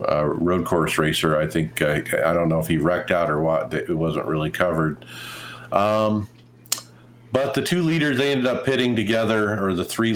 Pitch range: 90-115 Hz